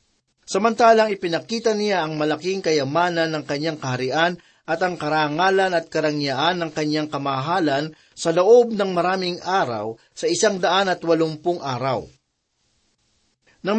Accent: native